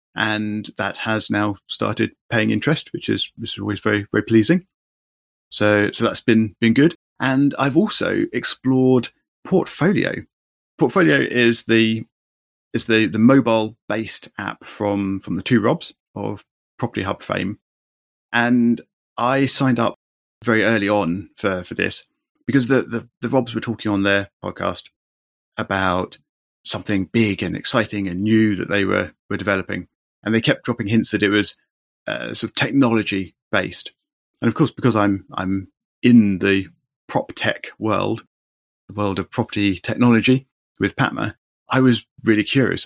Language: English